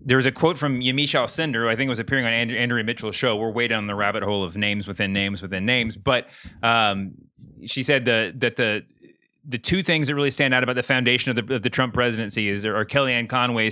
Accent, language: American, English